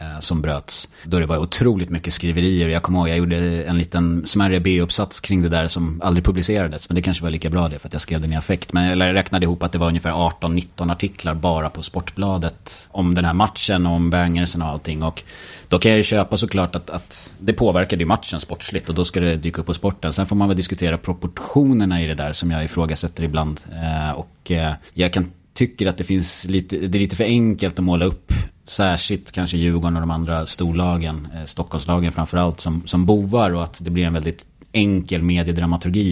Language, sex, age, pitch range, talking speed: English, male, 30-49, 85-95 Hz, 215 wpm